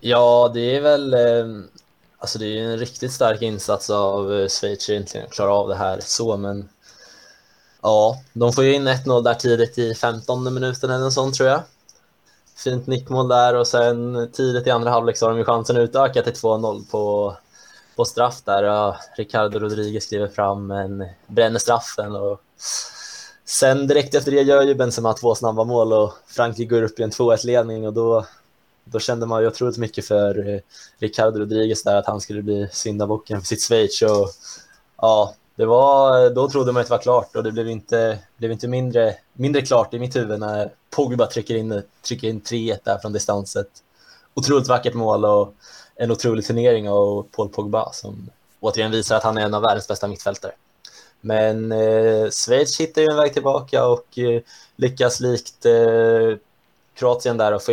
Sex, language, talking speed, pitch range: male, Swedish, 180 wpm, 105-125 Hz